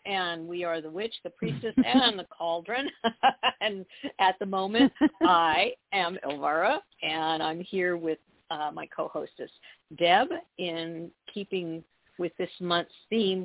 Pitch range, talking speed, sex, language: 160-195 Hz, 145 wpm, female, English